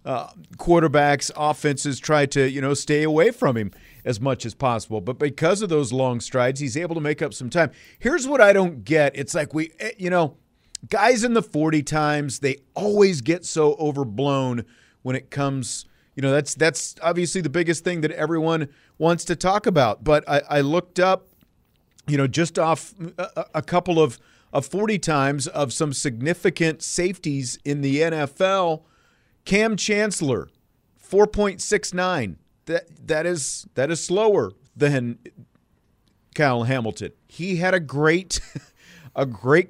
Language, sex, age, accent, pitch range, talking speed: English, male, 40-59, American, 135-180 Hz, 165 wpm